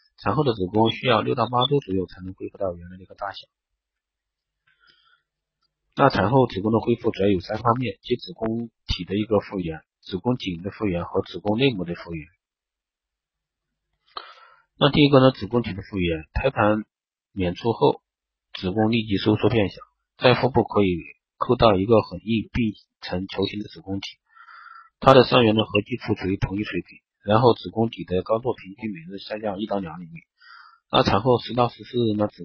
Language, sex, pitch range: Chinese, male, 95-125 Hz